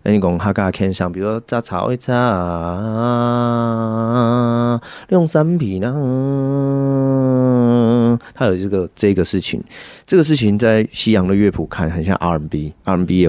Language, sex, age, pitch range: Chinese, male, 30-49, 85-110 Hz